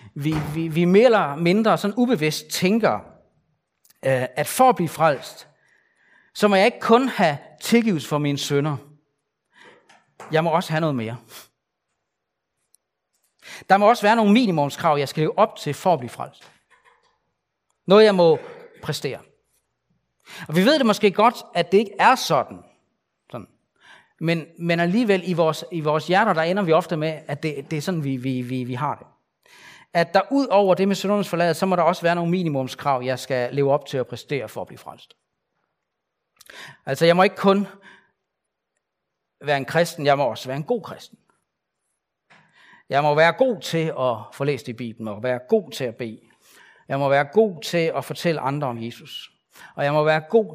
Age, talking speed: 40-59, 185 wpm